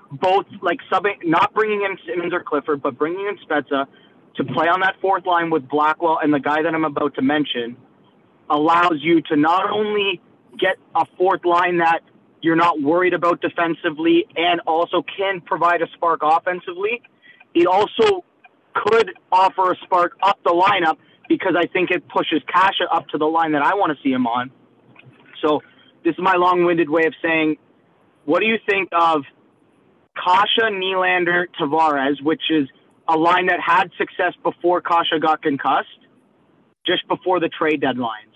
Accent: American